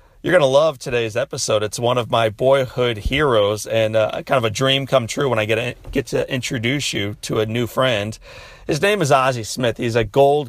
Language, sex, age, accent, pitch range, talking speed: English, male, 40-59, American, 110-135 Hz, 230 wpm